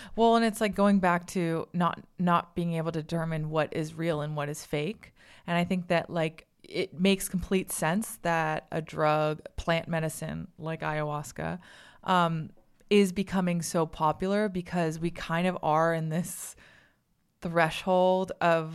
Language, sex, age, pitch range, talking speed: English, female, 20-39, 160-185 Hz, 160 wpm